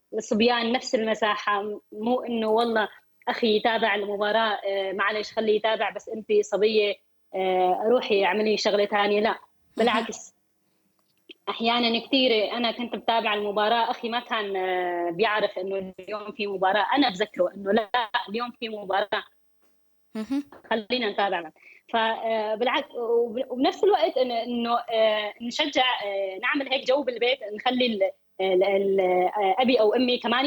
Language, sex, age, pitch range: Arabic, female, 20-39, 205-250 Hz